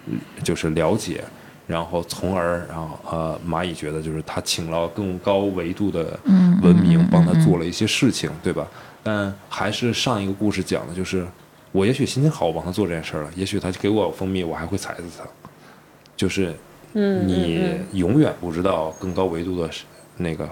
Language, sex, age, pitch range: Chinese, male, 20-39, 85-105 Hz